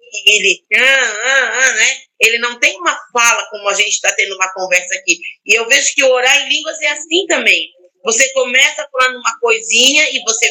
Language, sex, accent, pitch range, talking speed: Portuguese, female, Brazilian, 195-270 Hz, 200 wpm